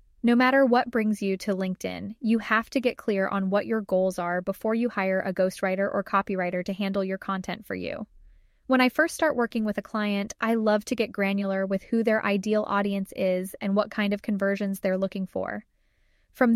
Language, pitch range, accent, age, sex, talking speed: English, 195-235 Hz, American, 10-29, female, 210 wpm